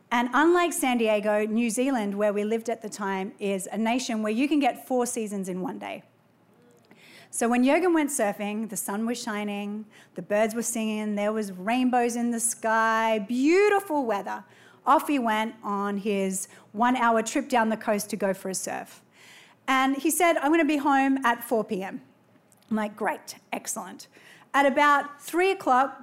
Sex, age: female, 30-49